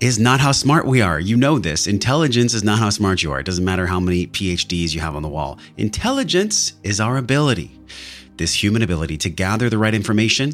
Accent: American